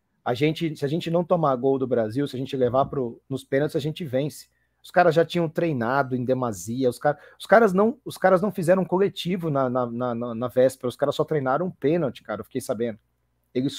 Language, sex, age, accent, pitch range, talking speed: Portuguese, male, 40-59, Brazilian, 125-165 Hz, 240 wpm